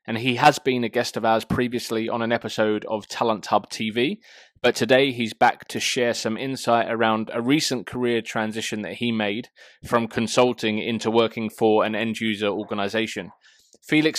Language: English